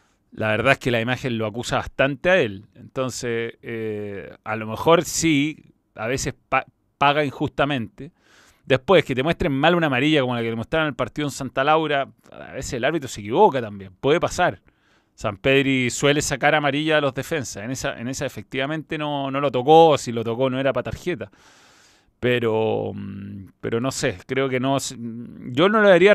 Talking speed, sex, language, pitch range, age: 195 wpm, male, Spanish, 115-150 Hz, 30-49